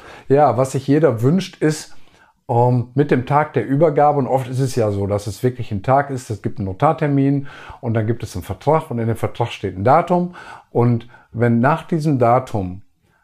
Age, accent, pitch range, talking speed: 50-69, German, 110-135 Hz, 210 wpm